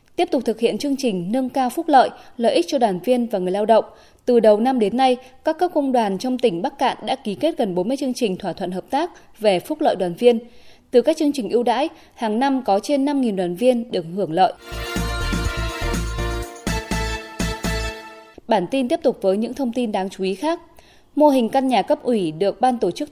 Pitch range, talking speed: 200-265 Hz, 225 wpm